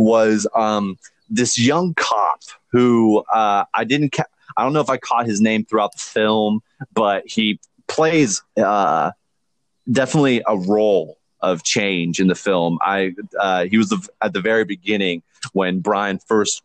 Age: 30-49